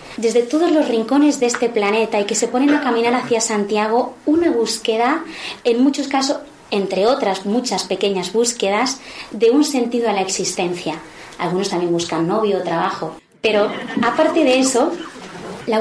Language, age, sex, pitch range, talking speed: Spanish, 20-39, female, 215-265 Hz, 160 wpm